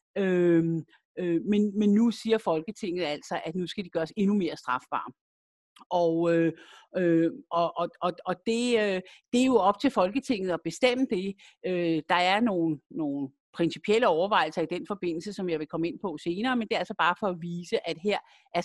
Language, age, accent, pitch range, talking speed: Danish, 50-69, native, 170-215 Hz, 180 wpm